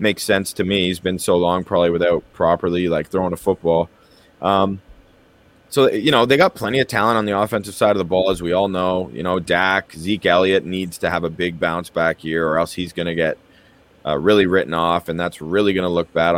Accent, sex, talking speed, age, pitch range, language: American, male, 230 wpm, 20-39, 85-95 Hz, English